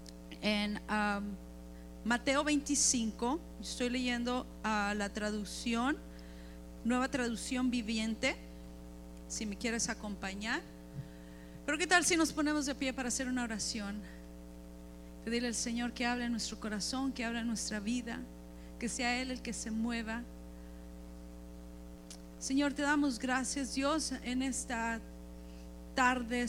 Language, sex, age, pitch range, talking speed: Spanish, female, 40-59, 210-255 Hz, 125 wpm